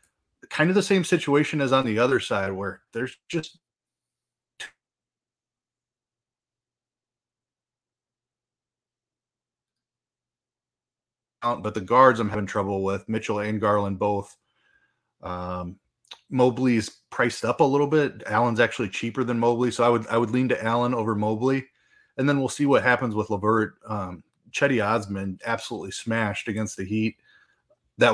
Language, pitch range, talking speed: English, 105-125 Hz, 130 wpm